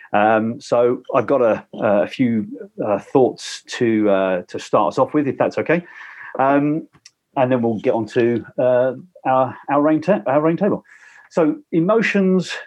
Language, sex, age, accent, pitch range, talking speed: English, male, 50-69, British, 115-155 Hz, 170 wpm